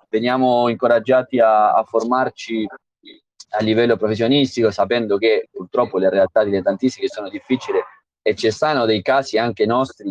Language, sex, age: Italian, male, 20-39